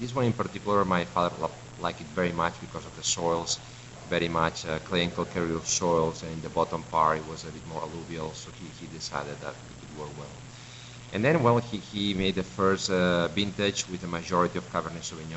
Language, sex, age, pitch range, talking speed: English, male, 50-69, 80-100 Hz, 225 wpm